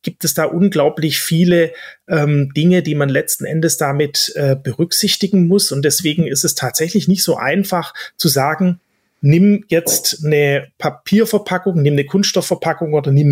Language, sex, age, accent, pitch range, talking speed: German, male, 30-49, German, 140-175 Hz, 155 wpm